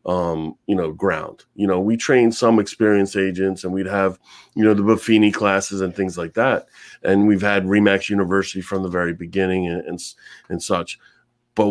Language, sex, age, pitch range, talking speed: English, male, 30-49, 95-115 Hz, 190 wpm